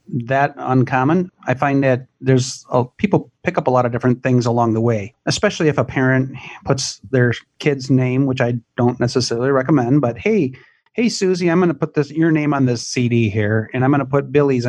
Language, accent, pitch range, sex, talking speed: English, American, 120-140 Hz, male, 215 wpm